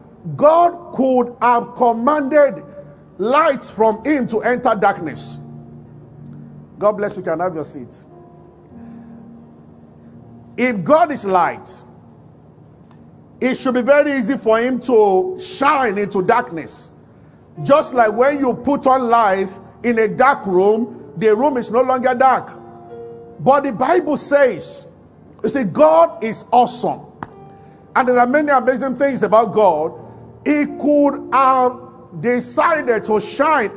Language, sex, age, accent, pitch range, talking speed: English, male, 50-69, Nigerian, 210-285 Hz, 130 wpm